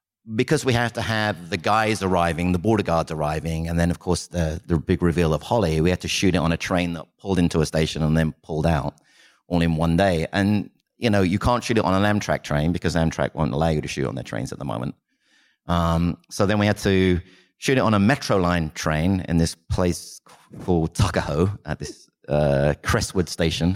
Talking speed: 225 wpm